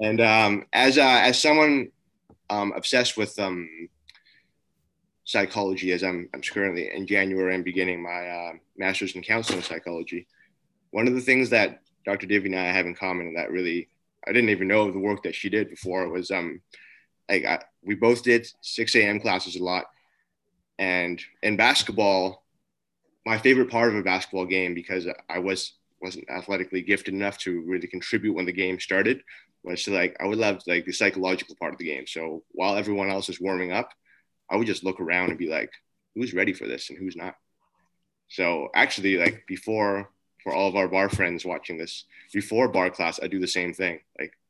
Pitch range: 90-105 Hz